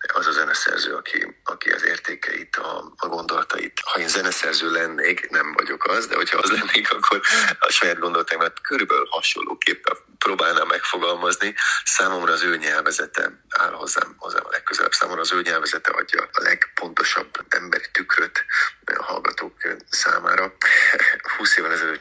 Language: Hungarian